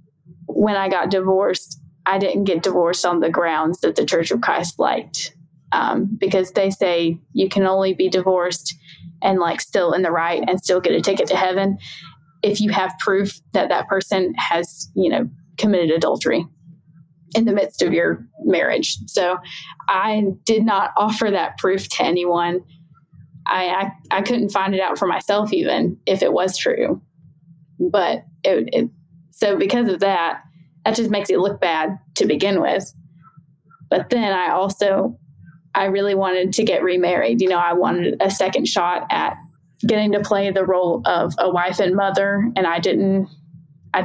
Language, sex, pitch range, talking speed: English, female, 165-195 Hz, 170 wpm